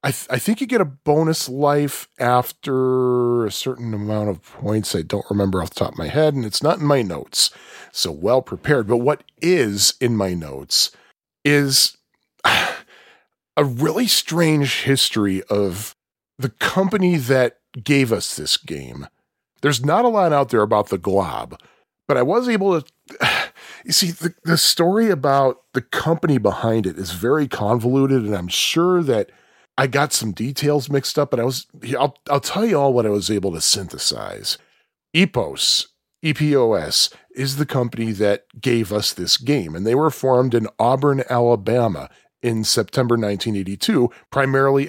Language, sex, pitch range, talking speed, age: English, male, 115-150 Hz, 165 wpm, 40-59